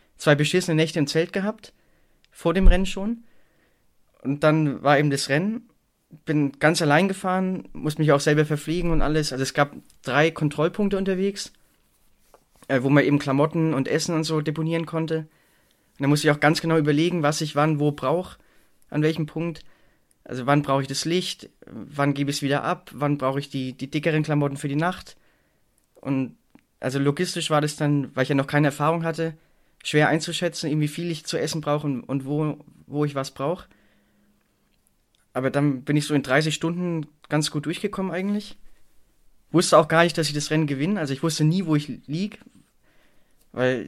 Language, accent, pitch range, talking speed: German, German, 140-165 Hz, 190 wpm